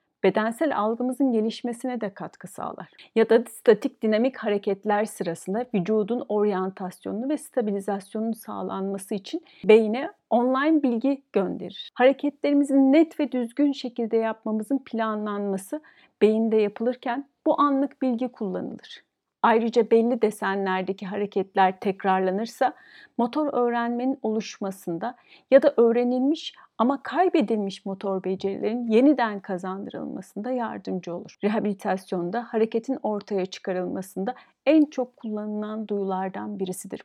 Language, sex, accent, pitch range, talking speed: Turkish, female, native, 195-255 Hz, 100 wpm